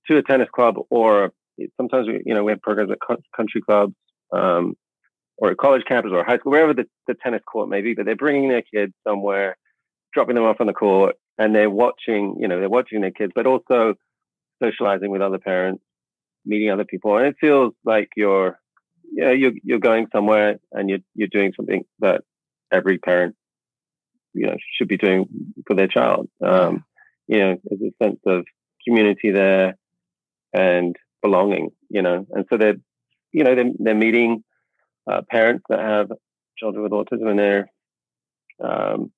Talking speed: 180 wpm